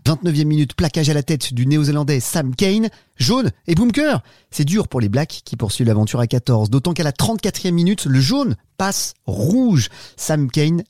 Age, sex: 30-49, male